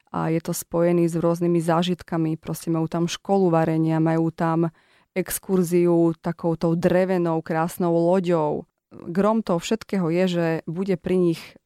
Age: 30-49